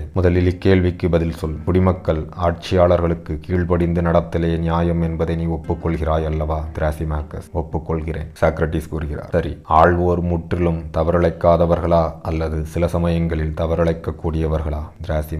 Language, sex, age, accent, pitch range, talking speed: Tamil, male, 30-49, native, 80-85 Hz, 70 wpm